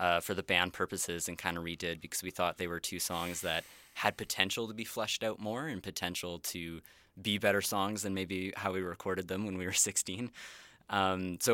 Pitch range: 90-100 Hz